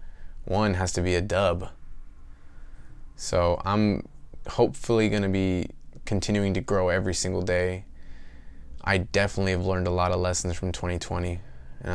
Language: English